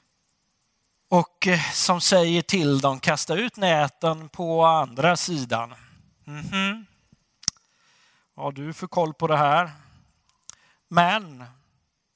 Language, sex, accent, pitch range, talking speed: Swedish, male, native, 135-185 Hz, 100 wpm